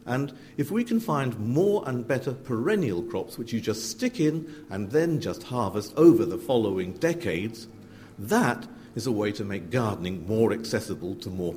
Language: English